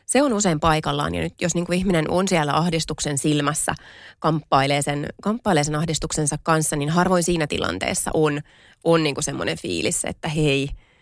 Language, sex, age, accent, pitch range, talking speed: Finnish, female, 30-49, native, 150-175 Hz, 165 wpm